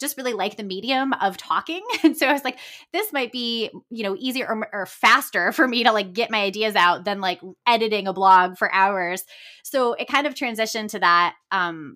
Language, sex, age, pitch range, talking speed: English, female, 20-39, 195-260 Hz, 220 wpm